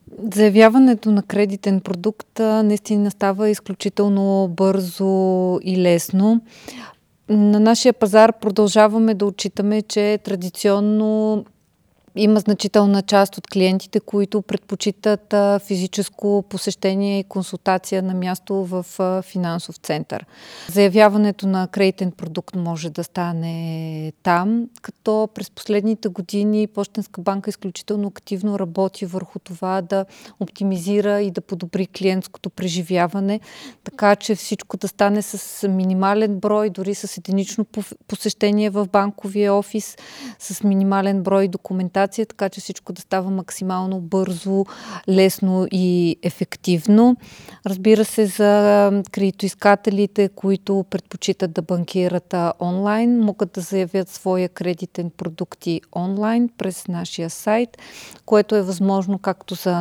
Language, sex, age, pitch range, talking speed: Bulgarian, female, 30-49, 185-210 Hz, 115 wpm